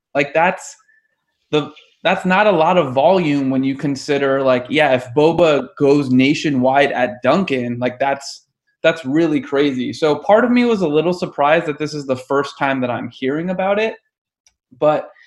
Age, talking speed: 20-39, 175 wpm